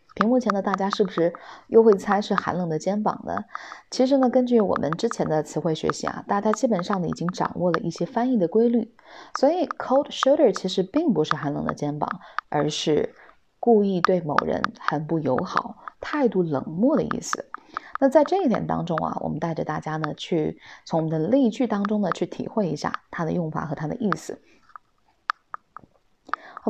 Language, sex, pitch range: Chinese, female, 175-240 Hz